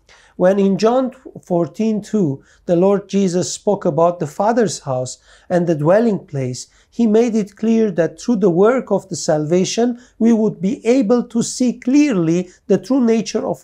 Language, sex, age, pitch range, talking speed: English, male, 50-69, 165-220 Hz, 170 wpm